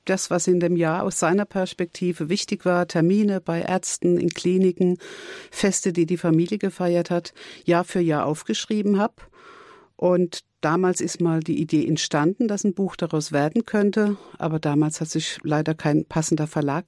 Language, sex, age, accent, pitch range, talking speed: German, female, 50-69, German, 160-195 Hz, 165 wpm